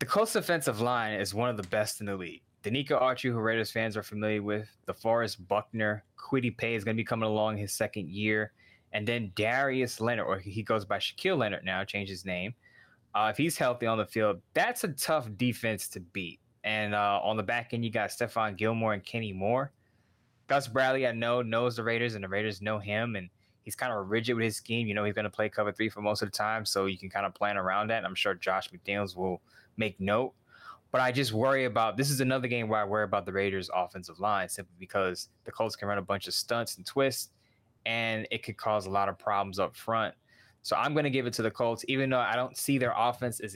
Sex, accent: male, American